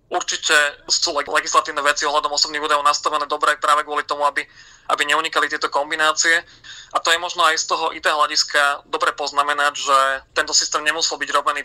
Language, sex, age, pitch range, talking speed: Slovak, male, 30-49, 145-155 Hz, 175 wpm